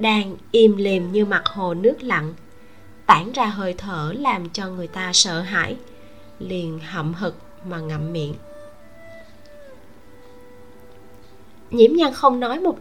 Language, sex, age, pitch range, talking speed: Vietnamese, female, 20-39, 185-270 Hz, 135 wpm